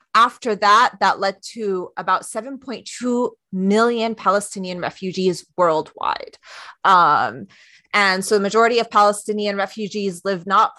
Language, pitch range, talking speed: English, 180-210 Hz, 115 wpm